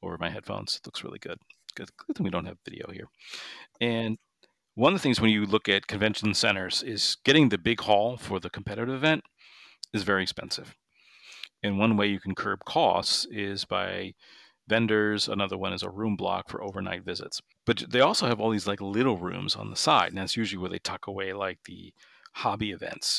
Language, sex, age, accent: English, male, 40-59, American